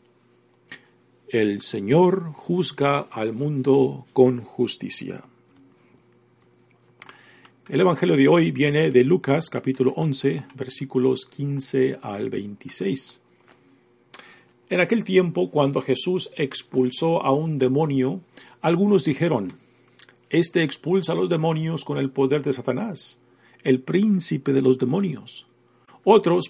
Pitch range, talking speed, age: 130-175 Hz, 105 wpm, 50-69